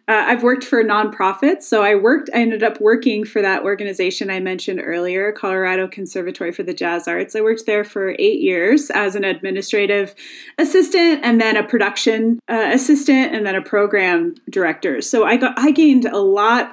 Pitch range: 200-265 Hz